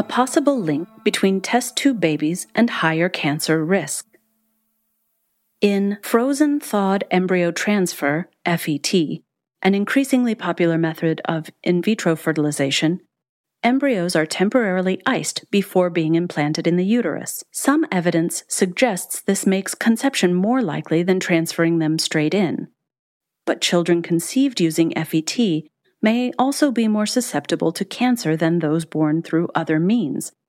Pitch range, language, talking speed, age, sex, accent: 165-220 Hz, English, 130 wpm, 40-59, female, American